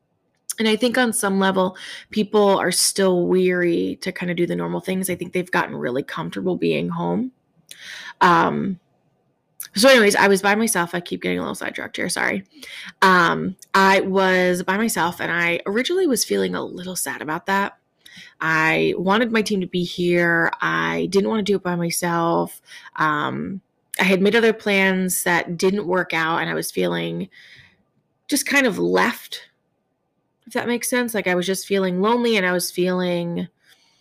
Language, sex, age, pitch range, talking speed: English, female, 20-39, 175-205 Hz, 180 wpm